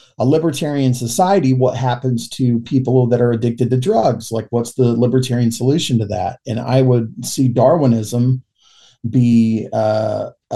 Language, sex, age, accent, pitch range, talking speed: English, male, 40-59, American, 115-130 Hz, 150 wpm